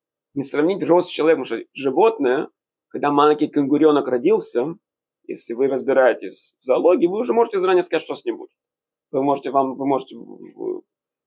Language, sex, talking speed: Russian, male, 165 wpm